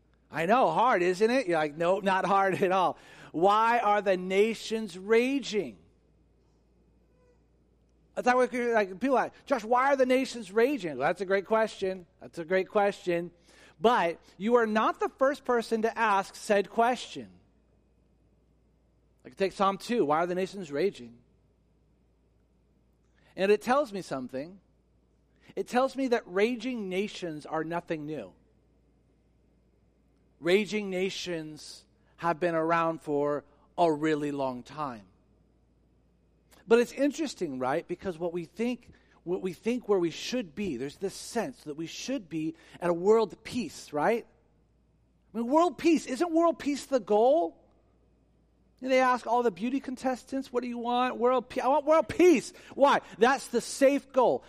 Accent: American